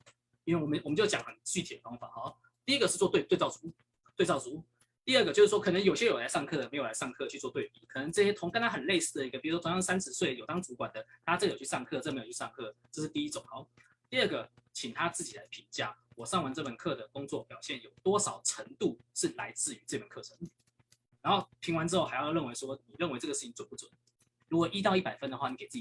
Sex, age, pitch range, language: male, 20-39, 135-185 Hz, Chinese